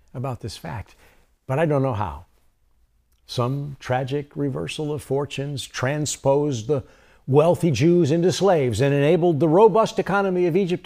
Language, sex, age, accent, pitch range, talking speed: English, male, 60-79, American, 100-155 Hz, 145 wpm